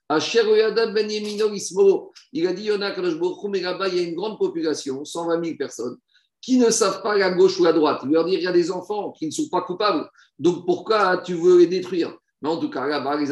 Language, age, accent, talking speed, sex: French, 50-69, French, 205 wpm, male